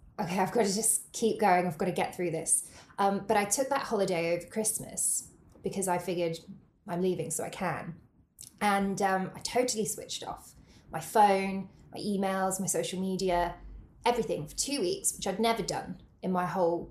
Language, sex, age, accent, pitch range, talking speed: English, female, 20-39, British, 180-220 Hz, 190 wpm